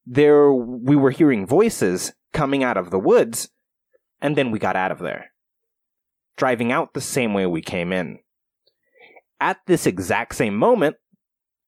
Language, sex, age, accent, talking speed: English, male, 30-49, American, 155 wpm